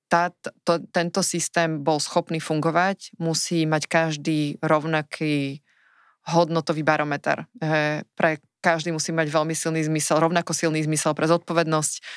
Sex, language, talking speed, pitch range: female, Slovak, 125 wpm, 155-170 Hz